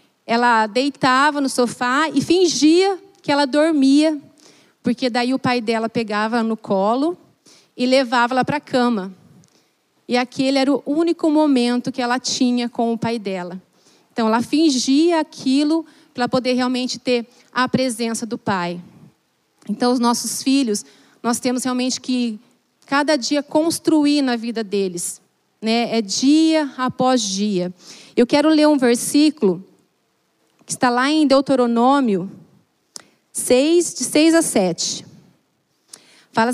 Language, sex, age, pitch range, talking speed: Portuguese, female, 30-49, 230-285 Hz, 135 wpm